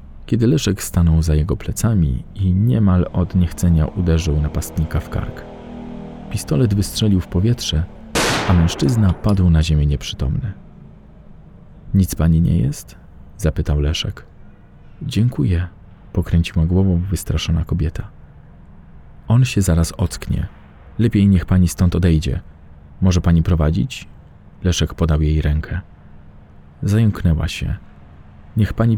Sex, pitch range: male, 80-100 Hz